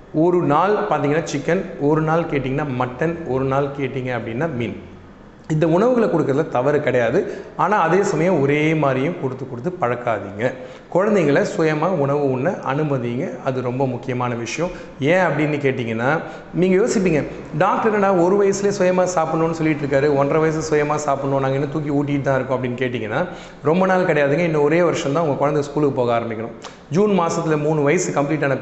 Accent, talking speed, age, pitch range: native, 160 wpm, 30-49, 130-165 Hz